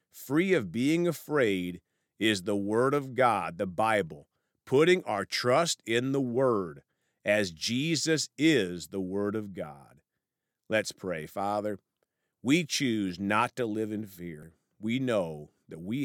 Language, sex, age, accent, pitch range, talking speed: English, male, 50-69, American, 95-145 Hz, 140 wpm